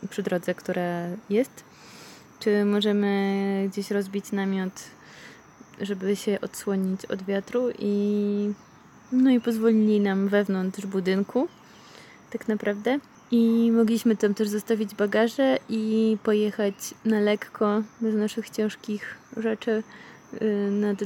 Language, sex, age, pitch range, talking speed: Polish, female, 20-39, 195-220 Hz, 110 wpm